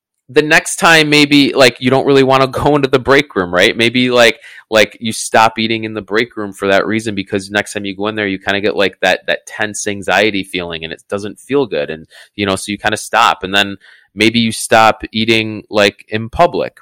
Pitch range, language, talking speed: 100-130 Hz, English, 245 wpm